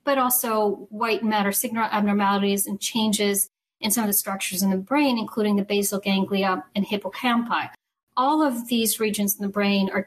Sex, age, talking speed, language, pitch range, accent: female, 40-59, 180 wpm, English, 200-240 Hz, American